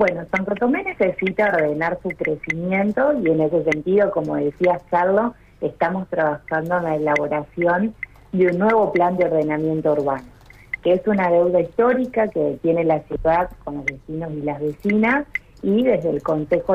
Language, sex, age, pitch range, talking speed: Spanish, female, 40-59, 155-195 Hz, 160 wpm